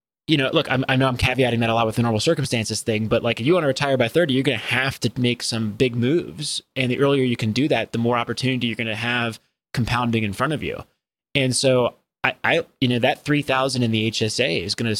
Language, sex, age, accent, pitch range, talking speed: English, male, 20-39, American, 115-135 Hz, 270 wpm